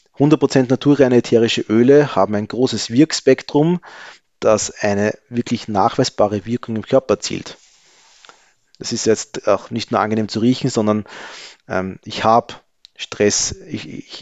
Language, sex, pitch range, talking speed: German, male, 105-130 Hz, 130 wpm